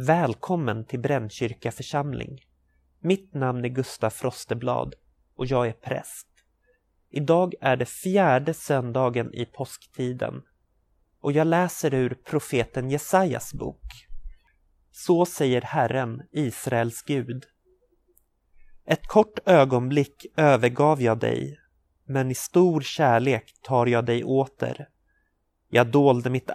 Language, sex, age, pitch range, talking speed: Swedish, male, 30-49, 120-150 Hz, 110 wpm